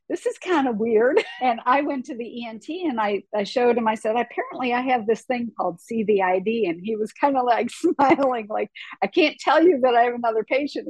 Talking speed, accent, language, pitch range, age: 230 wpm, American, English, 205-260 Hz, 50-69